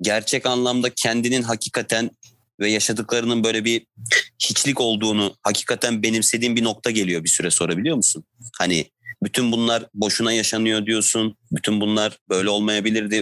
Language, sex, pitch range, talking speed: Turkish, male, 110-125 Hz, 130 wpm